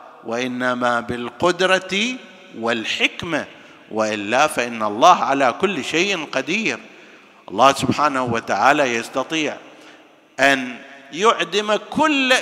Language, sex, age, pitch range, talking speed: Arabic, male, 50-69, 120-180 Hz, 80 wpm